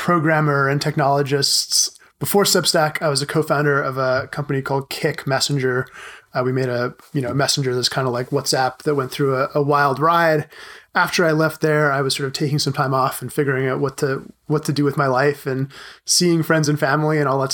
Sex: male